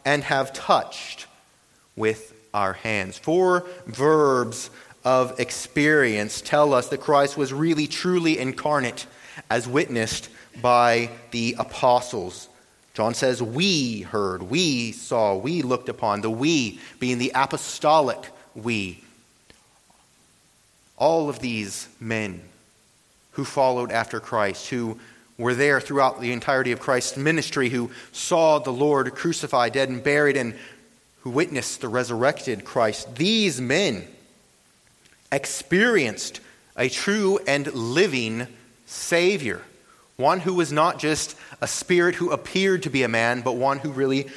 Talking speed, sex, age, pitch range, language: 125 wpm, male, 30-49, 120-150 Hz, English